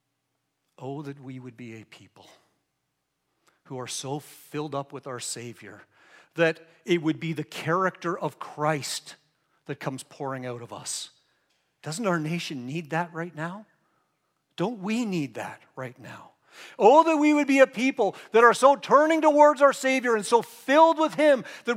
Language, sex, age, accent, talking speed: English, male, 50-69, American, 170 wpm